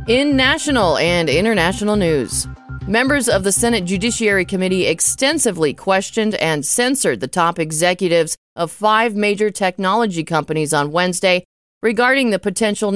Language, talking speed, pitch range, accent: English, 130 wpm, 150-205 Hz, American